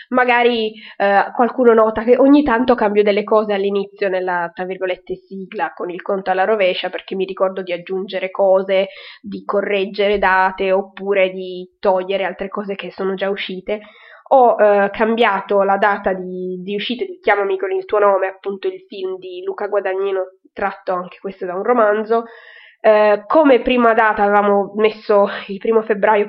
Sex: female